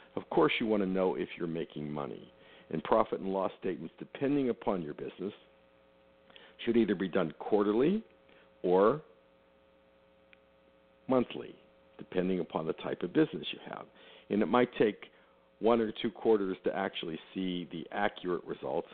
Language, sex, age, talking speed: English, male, 60-79, 150 wpm